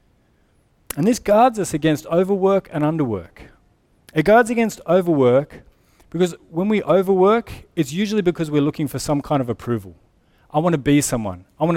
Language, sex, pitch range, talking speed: English, male, 130-170 Hz, 170 wpm